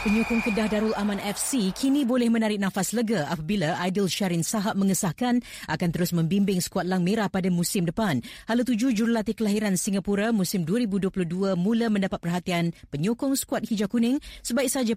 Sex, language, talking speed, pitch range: female, Malay, 155 wpm, 180-225 Hz